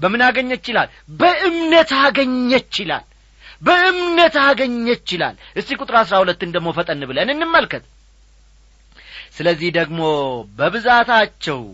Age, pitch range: 40-59, 165-270 Hz